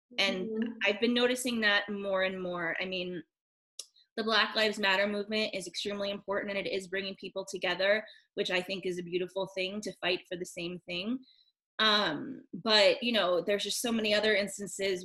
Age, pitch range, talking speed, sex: 20-39, 180-215 Hz, 190 wpm, female